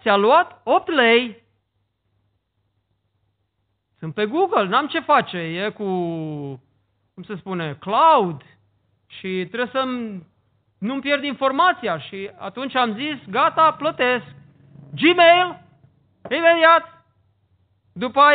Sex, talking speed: male, 100 wpm